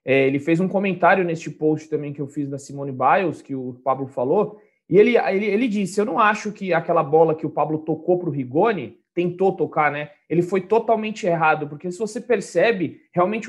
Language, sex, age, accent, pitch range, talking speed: Portuguese, male, 20-39, Brazilian, 155-200 Hz, 210 wpm